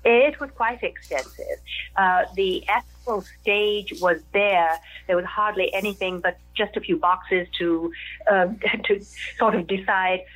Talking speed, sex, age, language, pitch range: 145 wpm, female, 50-69, English, 180-210 Hz